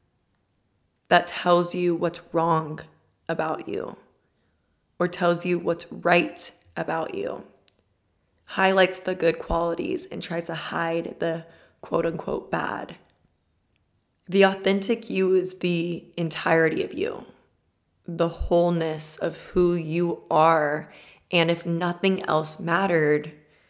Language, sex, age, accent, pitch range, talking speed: English, female, 20-39, American, 155-185 Hz, 110 wpm